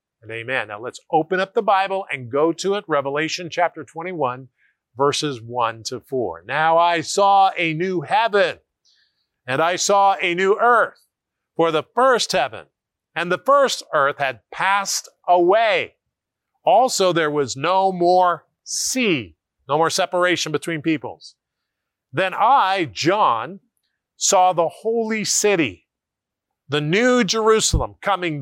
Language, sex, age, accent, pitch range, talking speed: English, male, 40-59, American, 140-190 Hz, 135 wpm